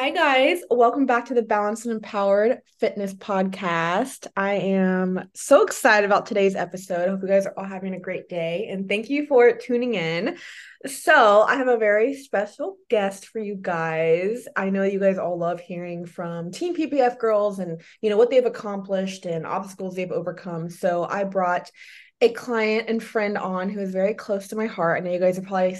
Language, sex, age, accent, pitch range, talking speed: English, female, 20-39, American, 180-225 Hz, 200 wpm